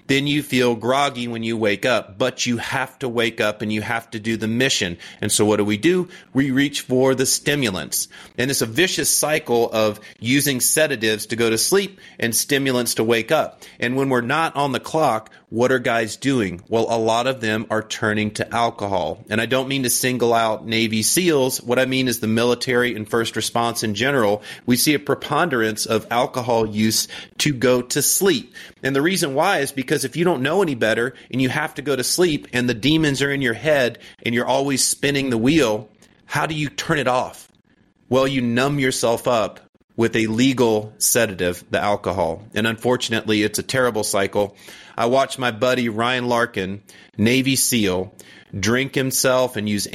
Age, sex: 30-49, male